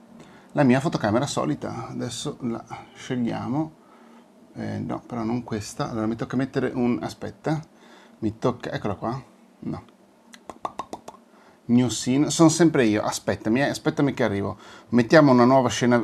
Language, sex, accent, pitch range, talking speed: English, male, Italian, 105-135 Hz, 140 wpm